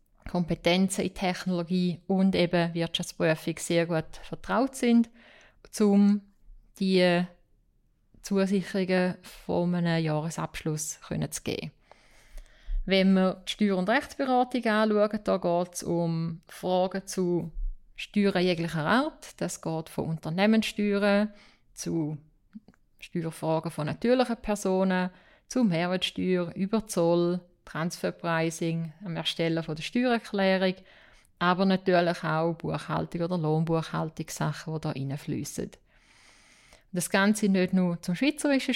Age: 30-49